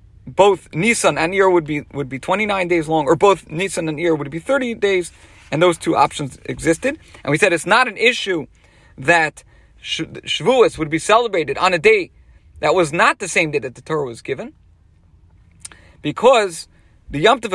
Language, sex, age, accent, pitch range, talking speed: English, male, 40-59, American, 145-205 Hz, 190 wpm